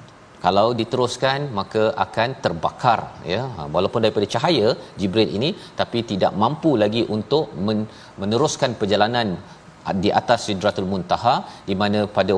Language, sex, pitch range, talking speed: Malayalam, male, 100-125 Hz, 120 wpm